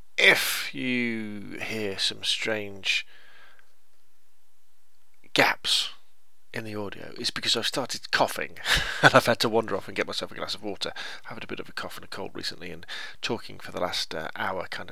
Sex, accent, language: male, British, English